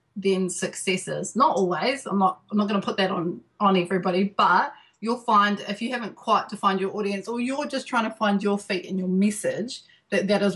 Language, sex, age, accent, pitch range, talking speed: English, female, 30-49, Australian, 185-215 Hz, 220 wpm